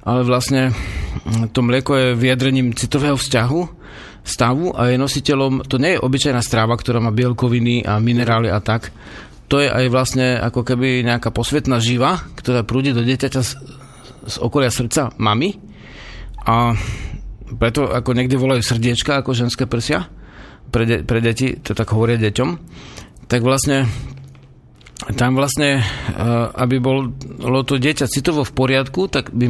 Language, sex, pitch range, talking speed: Slovak, male, 115-135 Hz, 145 wpm